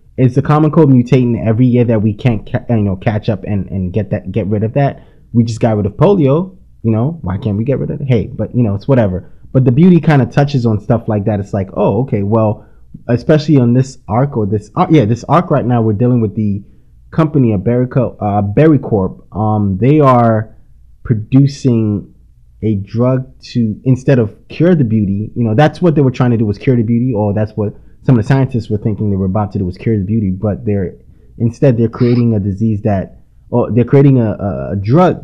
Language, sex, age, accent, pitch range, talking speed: English, male, 20-39, American, 105-130 Hz, 235 wpm